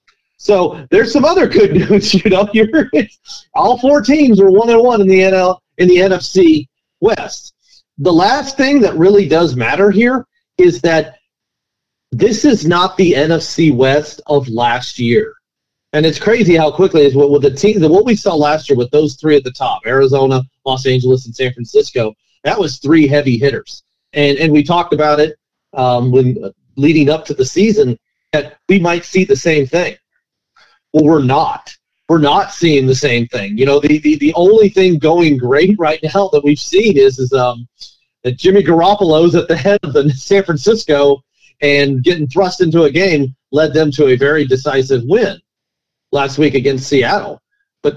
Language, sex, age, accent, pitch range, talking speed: English, male, 40-59, American, 140-195 Hz, 185 wpm